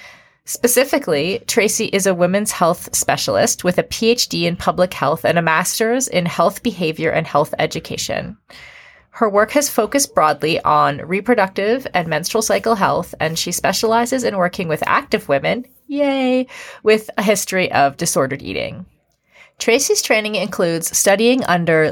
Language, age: English, 30-49